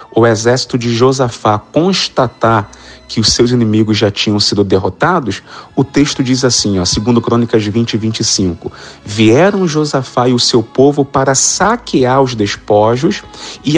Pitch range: 115-160 Hz